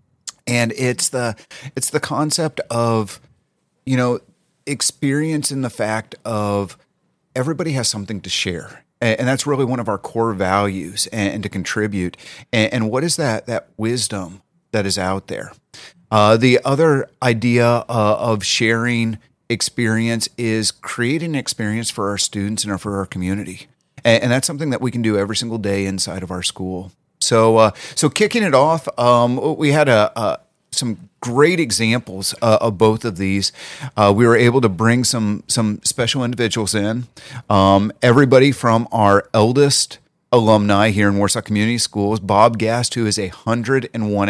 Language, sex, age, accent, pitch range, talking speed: English, male, 30-49, American, 105-130 Hz, 165 wpm